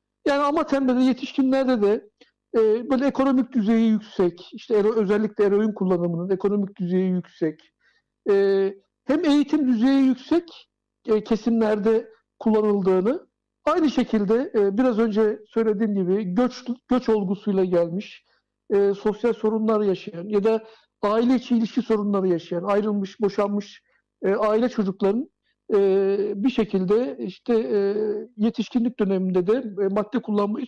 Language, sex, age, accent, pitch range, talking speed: Turkish, male, 60-79, native, 195-240 Hz, 120 wpm